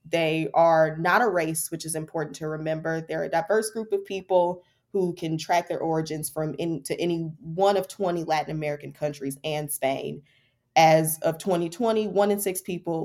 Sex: female